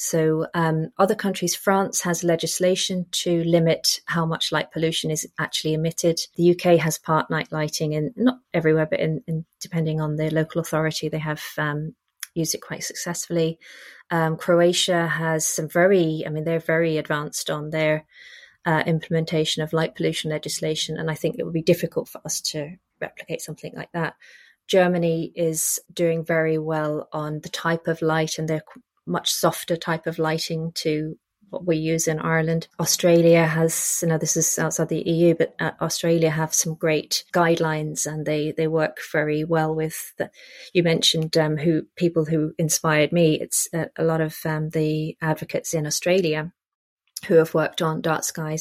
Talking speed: 175 wpm